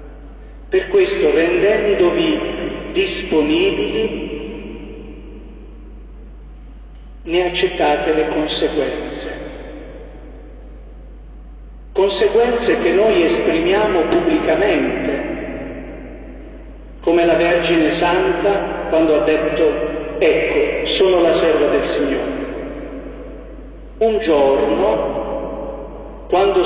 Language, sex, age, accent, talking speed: Italian, male, 50-69, native, 65 wpm